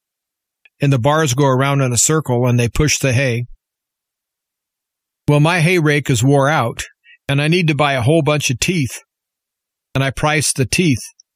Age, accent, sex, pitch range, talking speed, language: 40-59, American, male, 130-155 Hz, 185 wpm, English